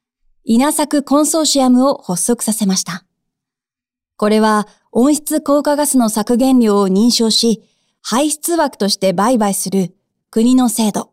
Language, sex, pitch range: Japanese, female, 210-275 Hz